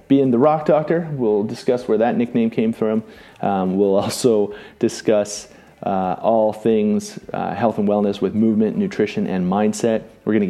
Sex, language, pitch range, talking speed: male, English, 105-135 Hz, 165 wpm